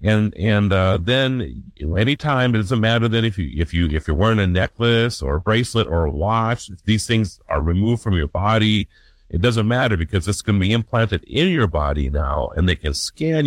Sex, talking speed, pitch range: male, 225 wpm, 85-130 Hz